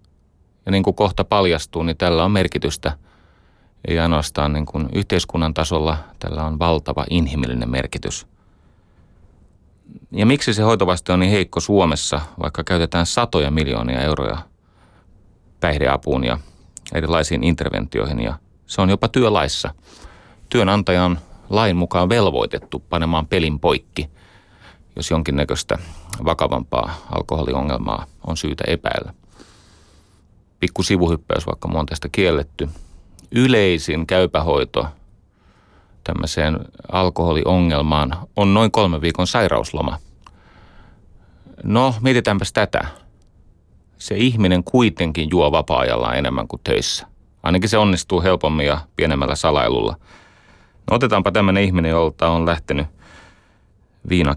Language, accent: Finnish, native